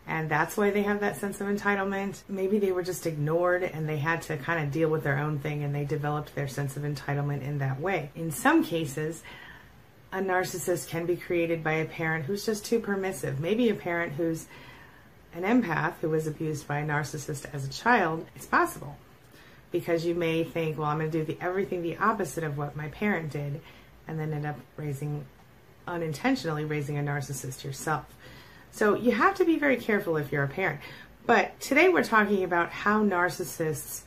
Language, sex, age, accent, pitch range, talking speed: English, female, 30-49, American, 145-185 Hz, 195 wpm